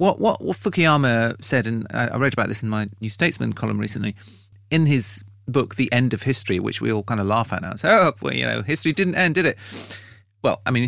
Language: English